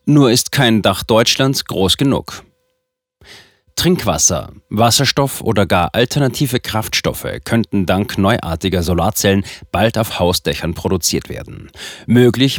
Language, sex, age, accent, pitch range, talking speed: German, male, 30-49, German, 95-125 Hz, 110 wpm